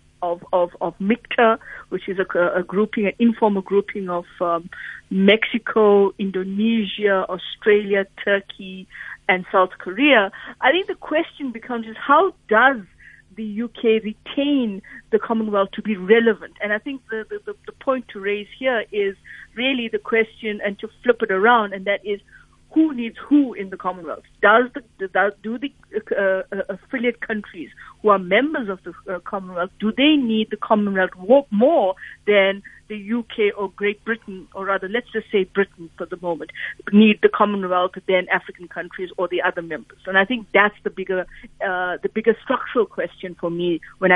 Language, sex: English, female